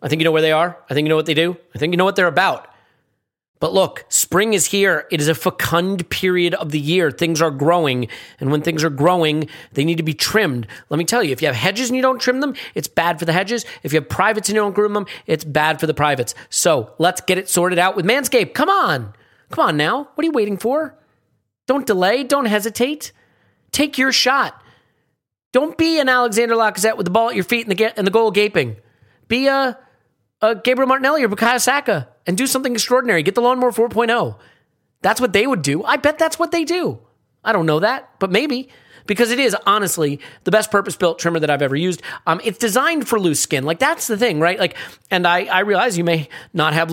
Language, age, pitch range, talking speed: English, 30-49, 160-235 Hz, 235 wpm